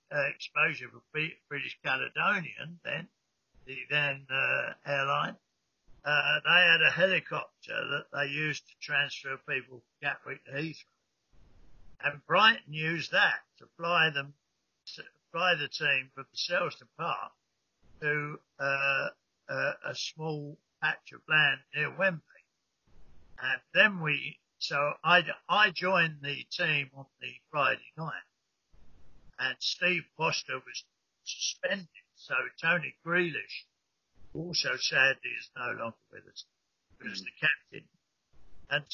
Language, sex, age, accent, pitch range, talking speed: English, male, 60-79, British, 140-175 Hz, 125 wpm